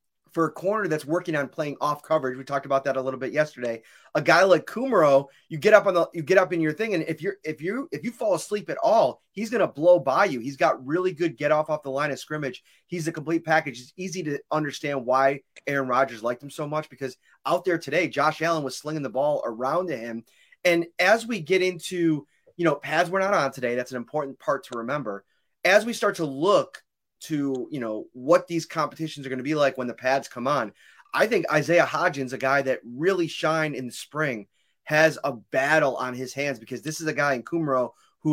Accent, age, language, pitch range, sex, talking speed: American, 30-49, English, 135-175 Hz, male, 235 wpm